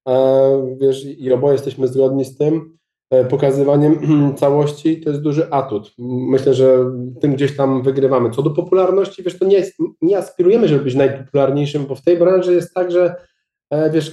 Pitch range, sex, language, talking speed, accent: 130-160 Hz, male, Polish, 160 wpm, native